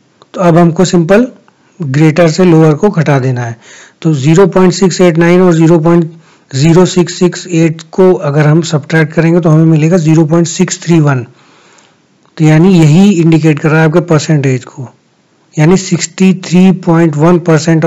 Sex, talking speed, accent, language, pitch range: male, 125 wpm, native, Hindi, 150-180 Hz